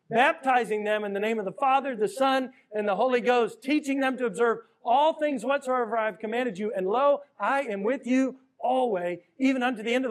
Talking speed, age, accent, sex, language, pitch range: 220 wpm, 40-59, American, male, English, 180-270 Hz